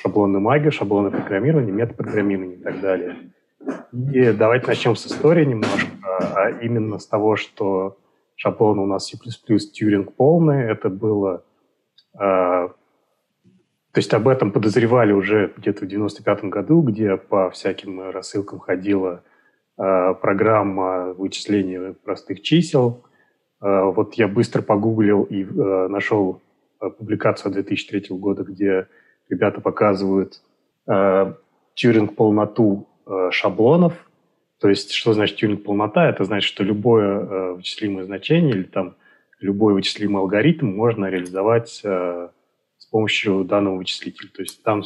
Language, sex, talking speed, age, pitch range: Russian, male, 130 wpm, 30-49, 95-110 Hz